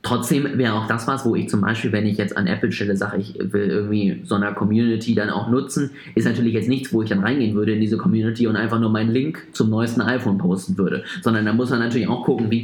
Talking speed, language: 260 wpm, German